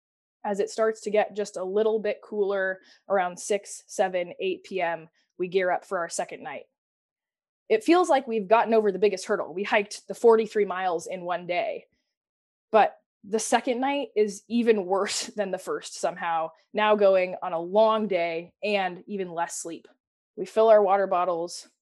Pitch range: 185-215 Hz